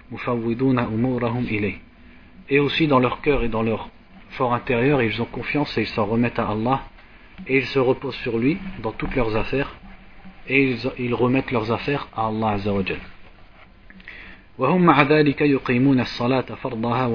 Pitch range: 110-130 Hz